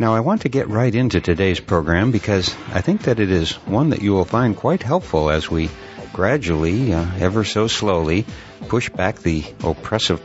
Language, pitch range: English, 85-110 Hz